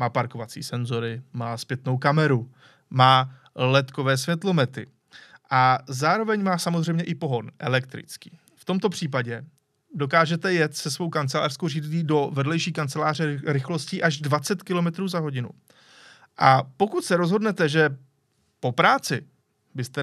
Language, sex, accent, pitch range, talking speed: Czech, male, native, 130-165 Hz, 125 wpm